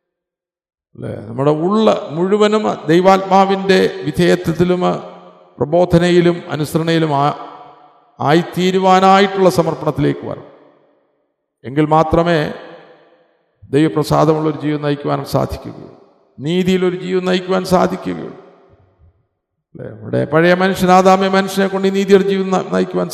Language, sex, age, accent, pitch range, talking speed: Malayalam, male, 50-69, native, 155-195 Hz, 80 wpm